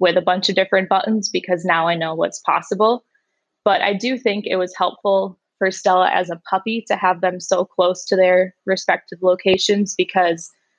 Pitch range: 175-200 Hz